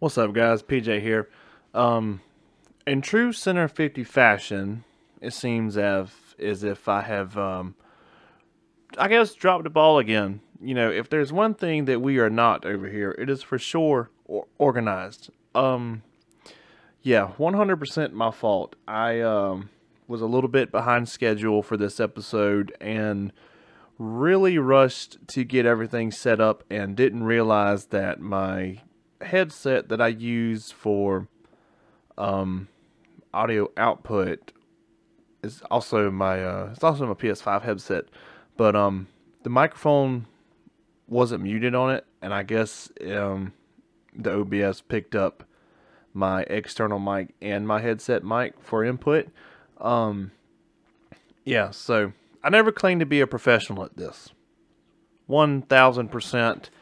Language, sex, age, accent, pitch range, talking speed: English, male, 30-49, American, 100-135 Hz, 135 wpm